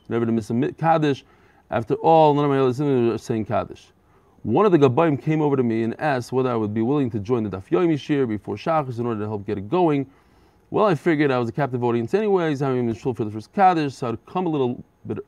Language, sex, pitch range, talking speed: English, male, 110-150 Hz, 265 wpm